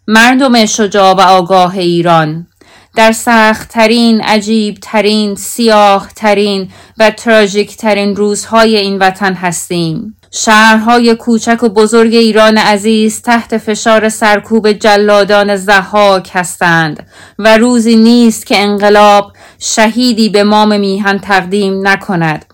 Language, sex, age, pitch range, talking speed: English, female, 30-49, 200-225 Hz, 100 wpm